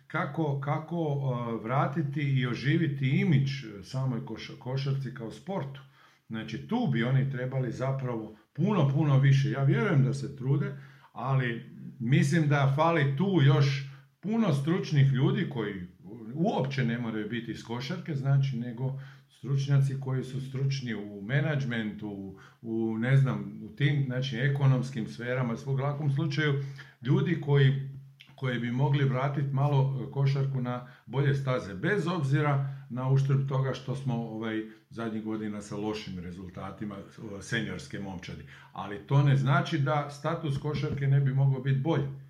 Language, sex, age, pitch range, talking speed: Croatian, male, 50-69, 120-145 Hz, 140 wpm